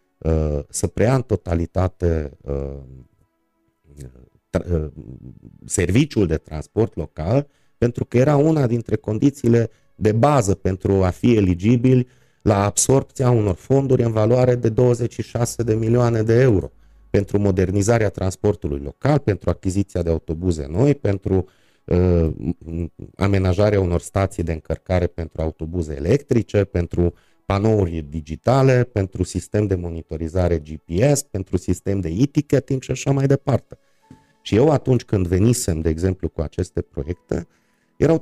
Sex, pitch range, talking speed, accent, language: male, 85-120 Hz, 120 wpm, native, Romanian